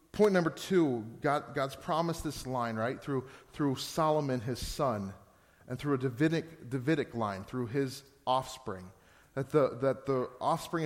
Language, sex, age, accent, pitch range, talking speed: English, male, 30-49, American, 115-155 Hz, 155 wpm